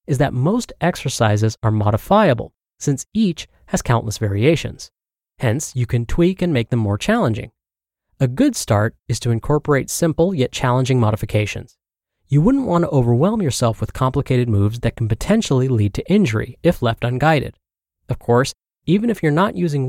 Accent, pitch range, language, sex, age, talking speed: American, 115-165 Hz, English, male, 30-49, 165 wpm